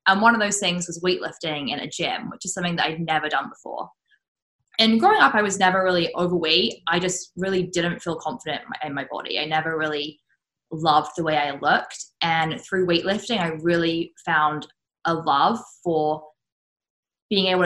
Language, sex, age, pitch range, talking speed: English, female, 10-29, 165-205 Hz, 185 wpm